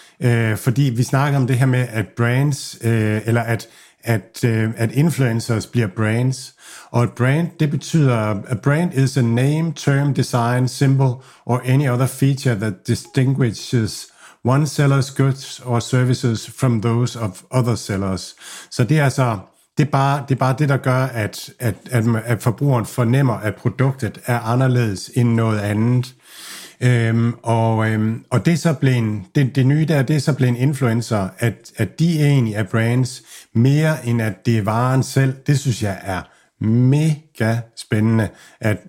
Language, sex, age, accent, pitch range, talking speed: Danish, male, 60-79, native, 115-140 Hz, 165 wpm